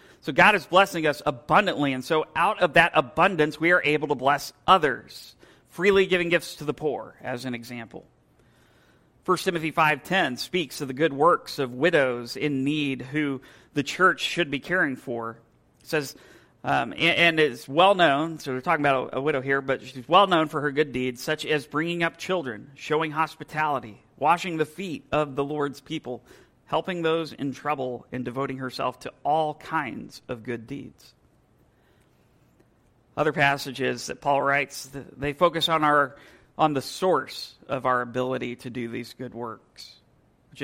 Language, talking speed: English, 175 wpm